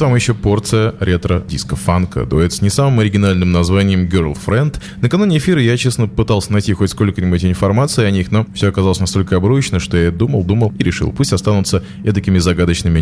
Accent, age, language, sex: native, 20-39, Russian, male